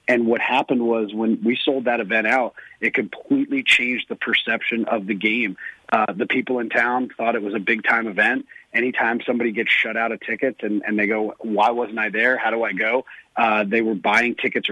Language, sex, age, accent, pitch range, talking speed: English, male, 40-59, American, 110-125 Hz, 215 wpm